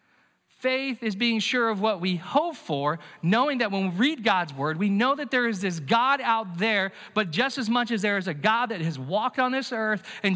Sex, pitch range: male, 145-225 Hz